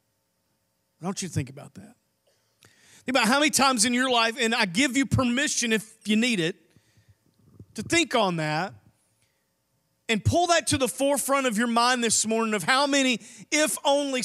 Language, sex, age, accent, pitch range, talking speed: English, male, 40-59, American, 220-310 Hz, 175 wpm